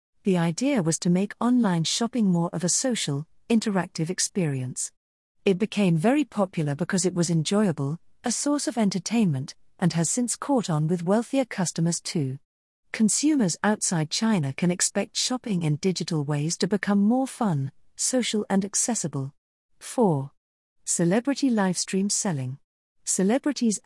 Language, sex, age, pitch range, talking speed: English, female, 40-59, 155-210 Hz, 140 wpm